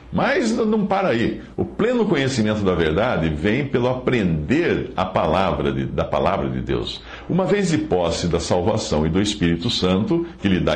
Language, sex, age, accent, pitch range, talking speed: Portuguese, male, 60-79, Brazilian, 80-115 Hz, 180 wpm